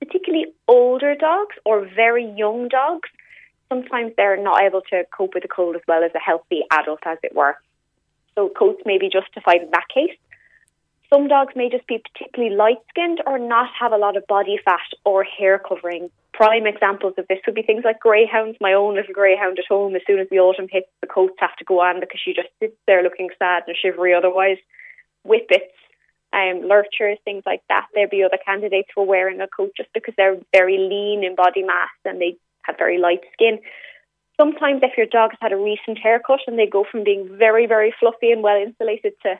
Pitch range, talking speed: 190-240 Hz, 205 wpm